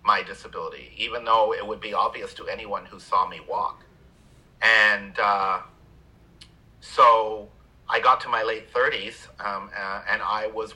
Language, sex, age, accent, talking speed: English, male, 40-59, American, 150 wpm